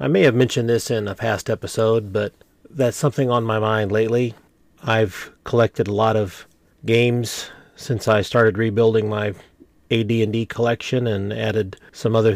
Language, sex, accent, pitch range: English, male, American, 105-120 Hz